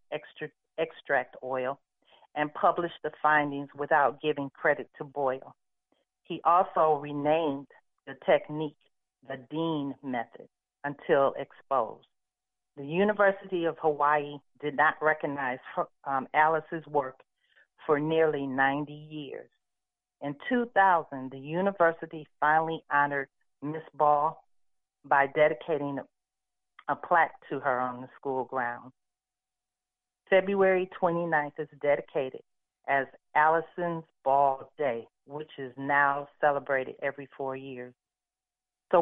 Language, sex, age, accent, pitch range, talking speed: English, female, 40-59, American, 140-160 Hz, 110 wpm